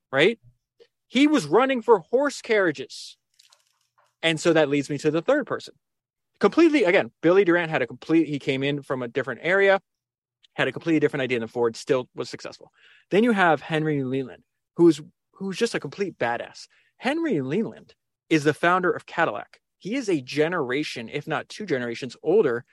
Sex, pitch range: male, 125-180 Hz